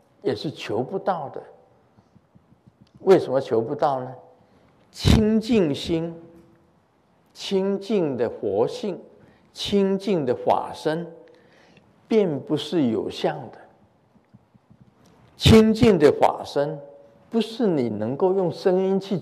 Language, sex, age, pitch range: Chinese, male, 50-69, 140-195 Hz